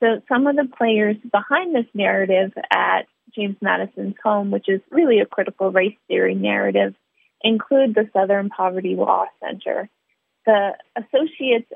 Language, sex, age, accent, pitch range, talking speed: English, female, 30-49, American, 200-230 Hz, 145 wpm